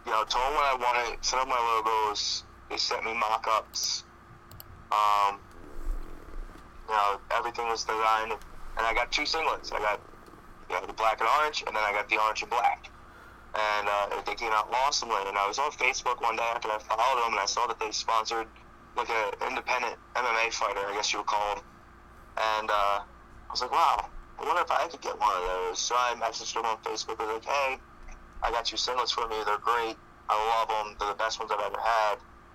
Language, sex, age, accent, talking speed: English, male, 30-49, American, 220 wpm